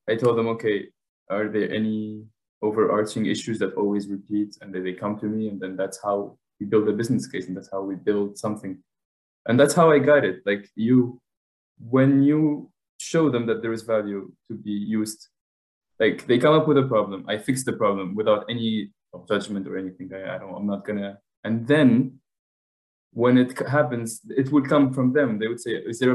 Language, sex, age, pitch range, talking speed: English, male, 20-39, 105-130 Hz, 205 wpm